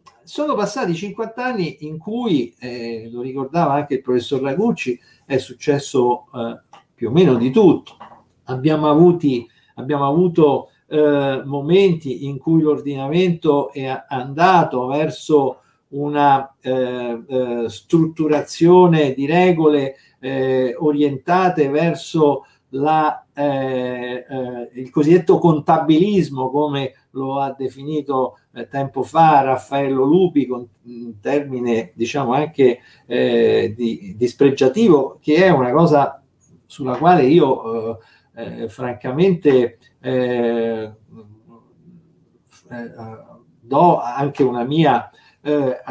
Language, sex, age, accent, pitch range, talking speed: Italian, male, 50-69, native, 125-160 Hz, 105 wpm